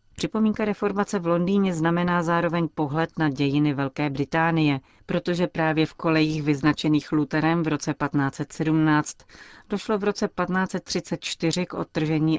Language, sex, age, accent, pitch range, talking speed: Czech, female, 40-59, native, 140-160 Hz, 125 wpm